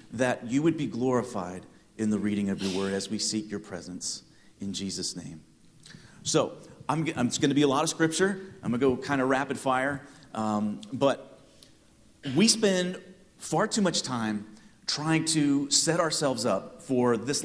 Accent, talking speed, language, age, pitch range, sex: American, 180 wpm, English, 40-59, 120-170 Hz, male